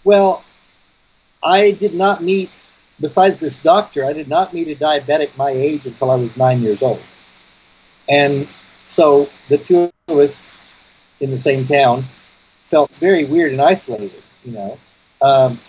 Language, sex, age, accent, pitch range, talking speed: English, male, 50-69, American, 140-195 Hz, 155 wpm